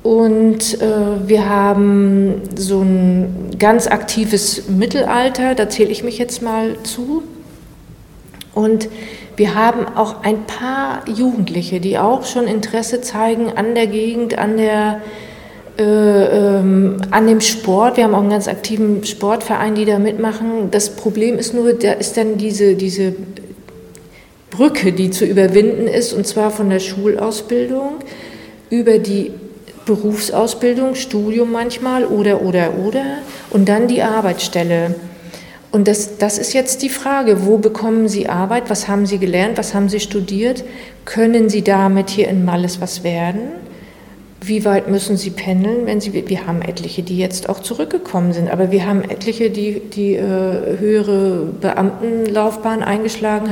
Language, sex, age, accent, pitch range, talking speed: German, female, 40-59, German, 195-225 Hz, 145 wpm